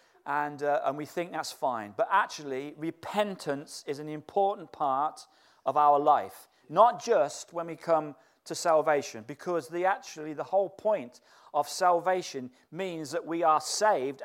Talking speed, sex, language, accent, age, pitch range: 155 wpm, male, English, British, 40-59, 155-205 Hz